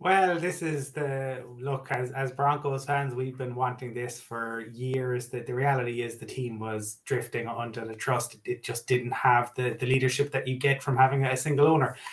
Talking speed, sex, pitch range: 205 wpm, male, 125-145 Hz